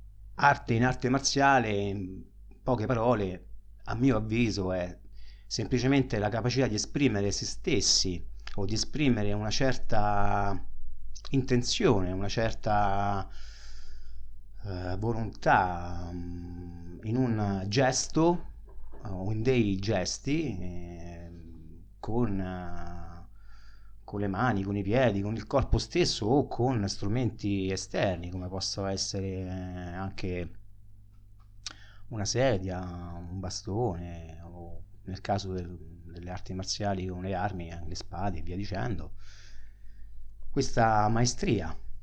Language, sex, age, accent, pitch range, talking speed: Italian, male, 30-49, native, 95-115 Hz, 105 wpm